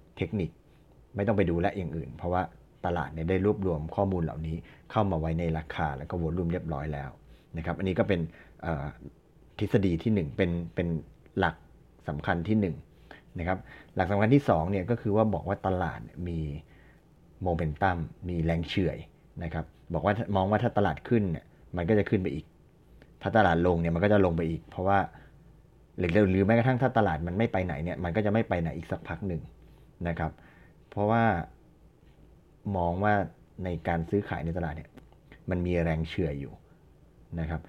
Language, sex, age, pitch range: Thai, male, 30-49, 80-100 Hz